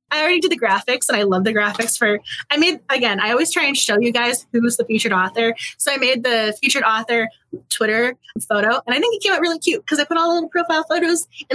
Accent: American